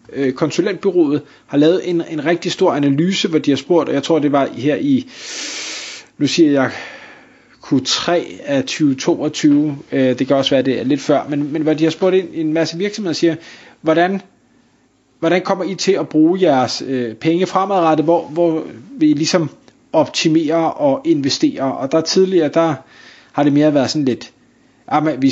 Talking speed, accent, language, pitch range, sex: 175 wpm, native, Danish, 135-175 Hz, male